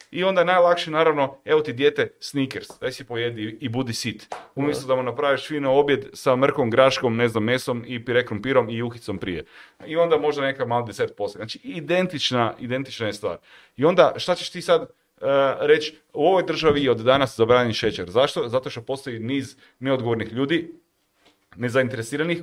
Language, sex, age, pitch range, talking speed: Croatian, male, 30-49, 120-155 Hz, 180 wpm